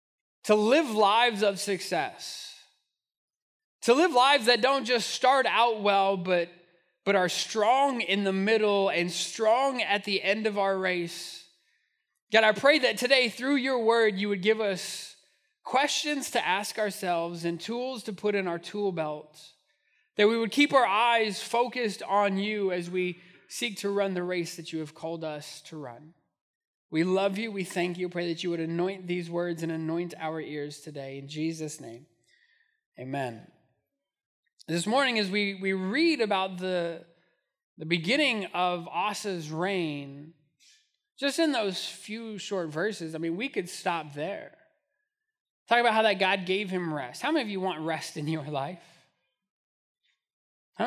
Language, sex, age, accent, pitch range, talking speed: English, male, 20-39, American, 170-235 Hz, 165 wpm